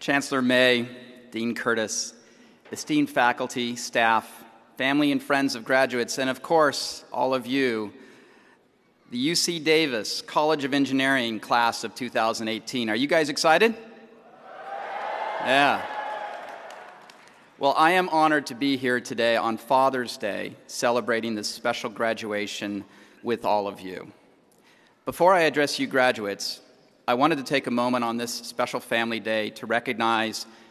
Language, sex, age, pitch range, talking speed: English, male, 40-59, 115-140 Hz, 135 wpm